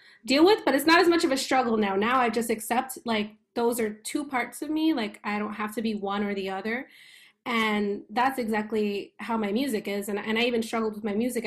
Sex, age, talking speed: female, 20-39, 245 wpm